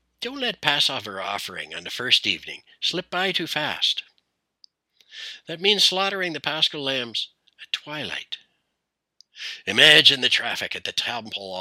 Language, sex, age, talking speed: English, male, 60-79, 135 wpm